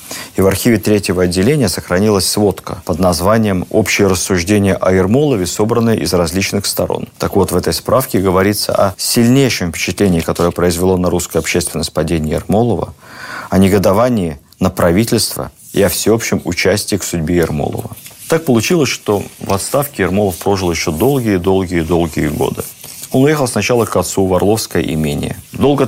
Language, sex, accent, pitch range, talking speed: Russian, male, native, 85-110 Hz, 145 wpm